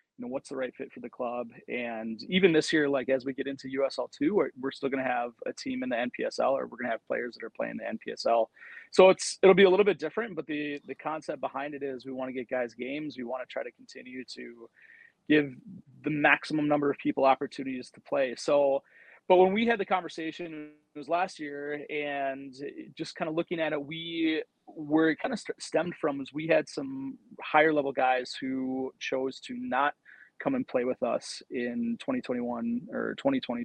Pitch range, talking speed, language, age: 135-185 Hz, 215 wpm, English, 30-49